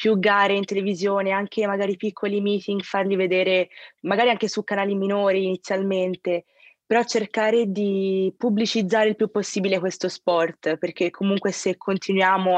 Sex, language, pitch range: female, Italian, 180-205 Hz